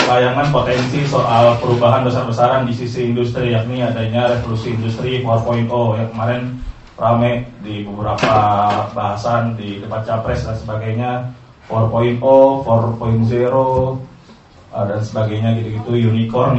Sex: male